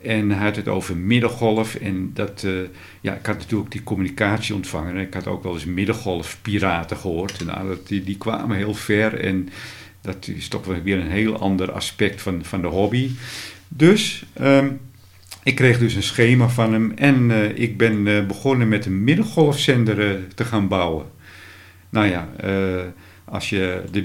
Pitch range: 95-110 Hz